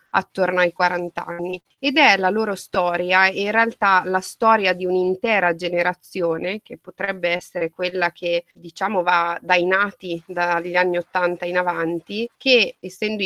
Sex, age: female, 30-49